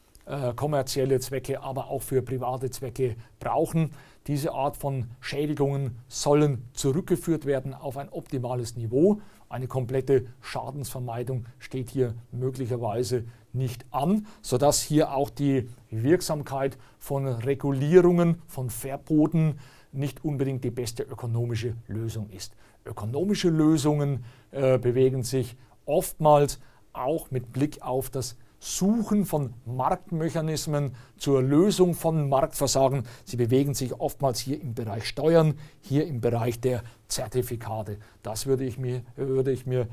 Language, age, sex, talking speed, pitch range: German, 40-59, male, 120 wpm, 120-145 Hz